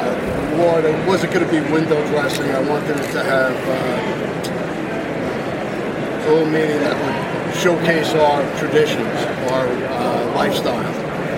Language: English